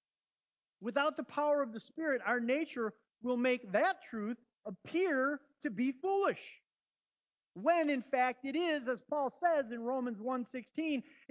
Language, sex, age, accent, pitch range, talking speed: English, male, 40-59, American, 195-295 Hz, 145 wpm